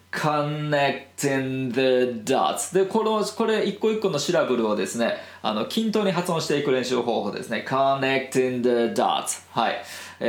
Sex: male